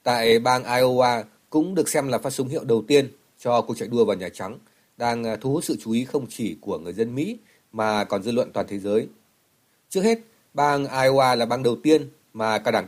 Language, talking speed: Vietnamese, 230 wpm